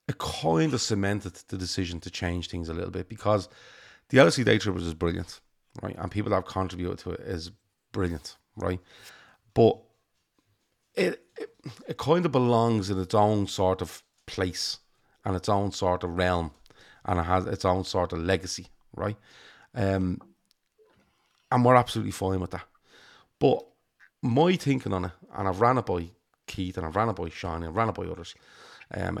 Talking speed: 185 wpm